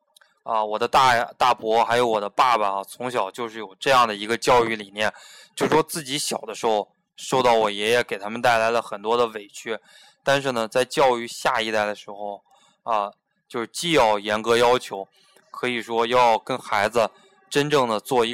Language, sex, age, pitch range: Chinese, male, 20-39, 110-125 Hz